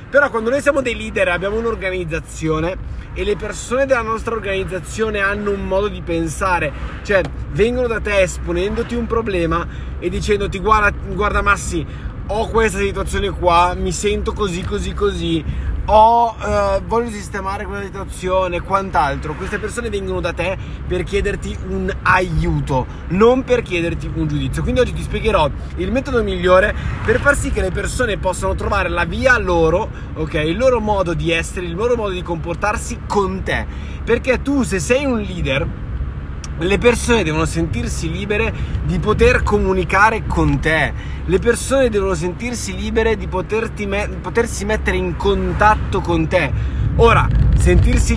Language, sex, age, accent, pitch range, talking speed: Italian, male, 20-39, native, 170-225 Hz, 150 wpm